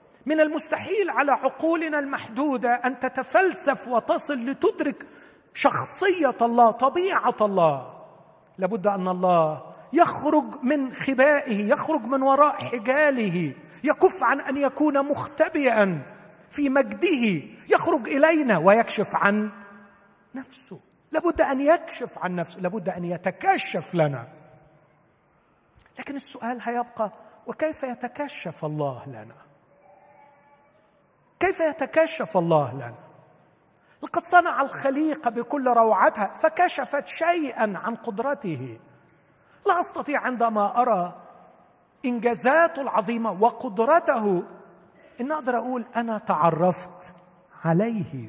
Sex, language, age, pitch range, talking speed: male, Arabic, 40-59, 190-290 Hz, 95 wpm